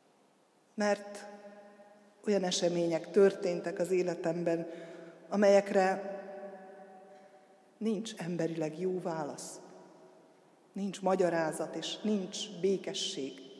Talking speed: 70 wpm